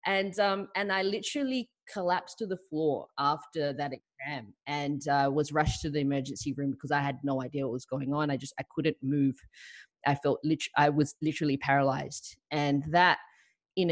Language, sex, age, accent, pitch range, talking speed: English, female, 20-39, Australian, 135-180 Hz, 190 wpm